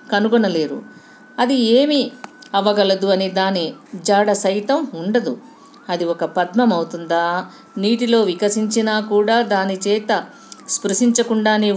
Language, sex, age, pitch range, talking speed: Telugu, female, 50-69, 185-260 Hz, 95 wpm